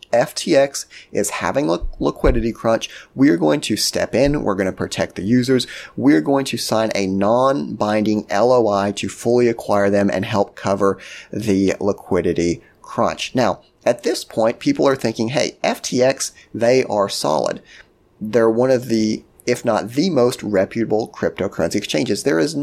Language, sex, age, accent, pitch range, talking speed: English, male, 30-49, American, 100-125 Hz, 160 wpm